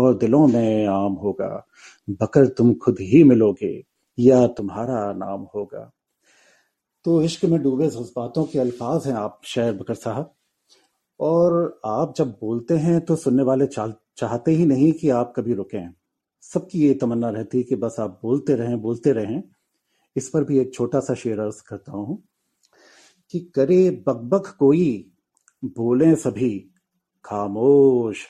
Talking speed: 130 wpm